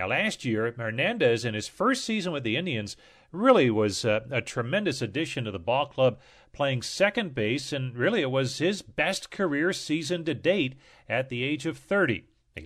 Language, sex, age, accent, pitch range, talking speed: English, male, 40-59, American, 115-155 Hz, 190 wpm